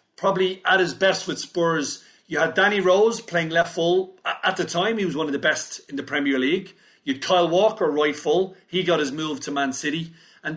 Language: English